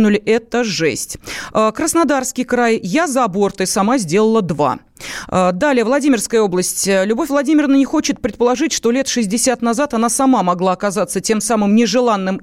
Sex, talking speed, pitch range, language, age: female, 145 wpm, 205-265 Hz, Russian, 30-49